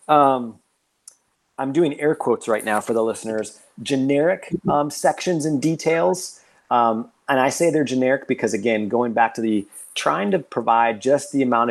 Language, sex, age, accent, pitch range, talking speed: English, male, 30-49, American, 110-130 Hz, 170 wpm